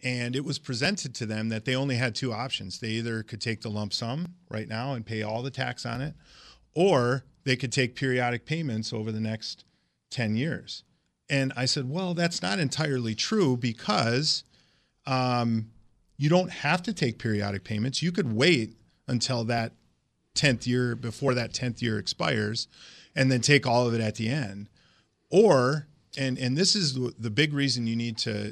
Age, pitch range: 30-49, 110-135 Hz